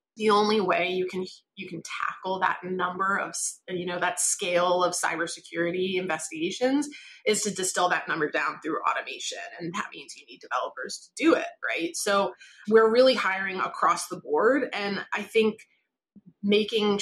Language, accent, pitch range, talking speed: English, American, 180-265 Hz, 165 wpm